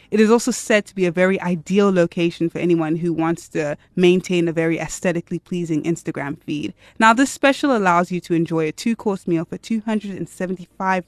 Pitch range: 165-215 Hz